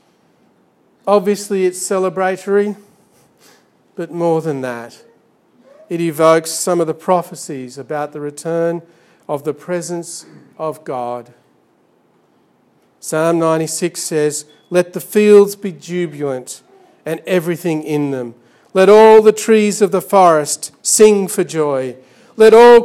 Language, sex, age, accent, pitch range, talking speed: English, male, 50-69, Australian, 165-215 Hz, 120 wpm